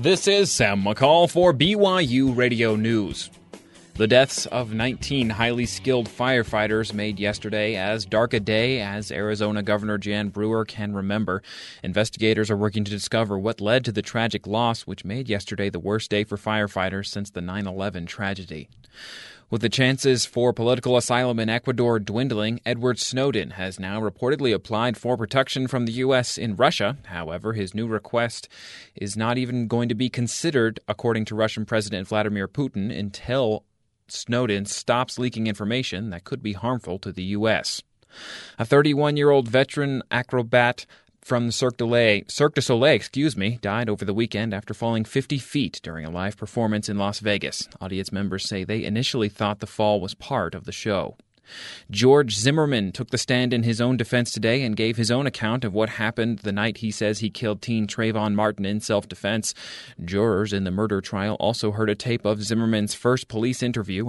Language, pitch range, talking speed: English, 105-125 Hz, 175 wpm